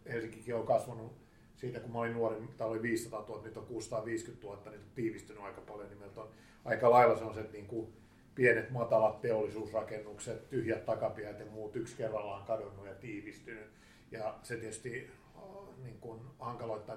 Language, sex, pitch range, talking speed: Finnish, male, 110-115 Hz, 165 wpm